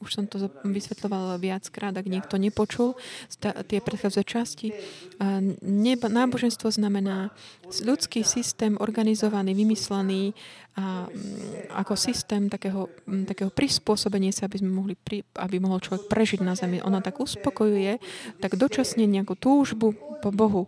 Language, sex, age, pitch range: Slovak, female, 20-39, 190-220 Hz